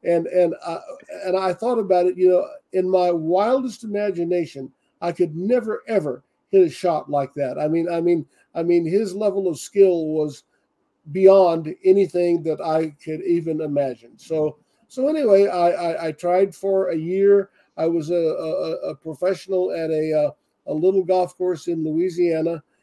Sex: male